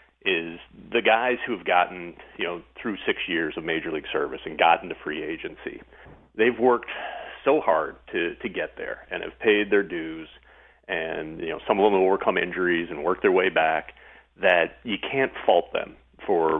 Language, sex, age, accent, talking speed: English, male, 40-59, American, 190 wpm